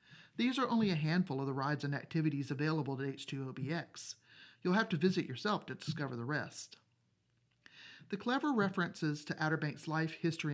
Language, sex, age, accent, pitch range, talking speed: English, male, 40-59, American, 145-180 Hz, 170 wpm